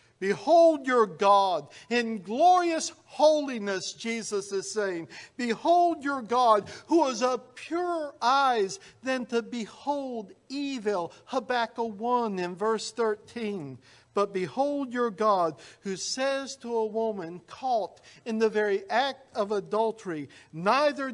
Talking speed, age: 120 wpm, 60-79